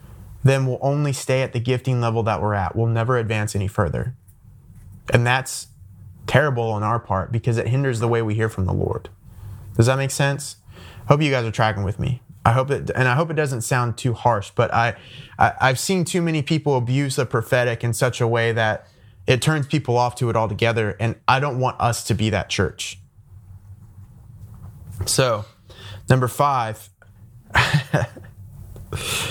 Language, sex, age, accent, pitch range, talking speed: English, male, 20-39, American, 105-130 Hz, 180 wpm